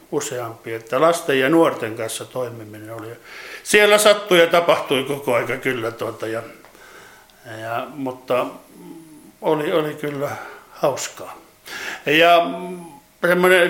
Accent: native